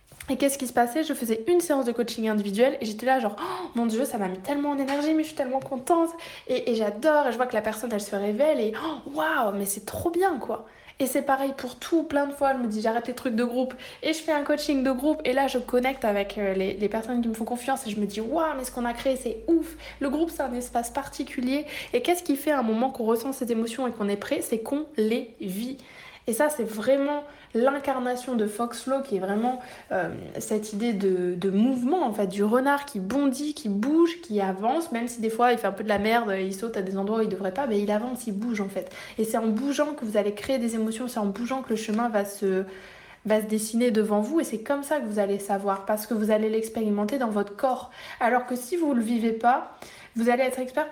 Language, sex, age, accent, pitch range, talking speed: French, female, 20-39, French, 215-275 Hz, 275 wpm